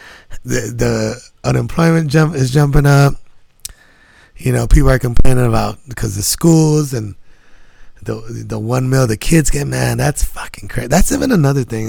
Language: English